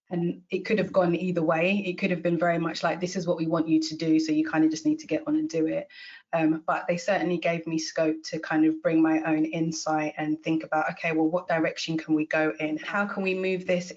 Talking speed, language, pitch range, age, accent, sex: 275 wpm, English, 160-180 Hz, 20-39, British, female